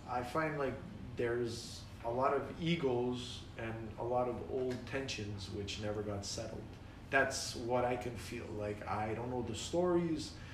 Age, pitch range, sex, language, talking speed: 30-49, 110-130 Hz, male, English, 165 wpm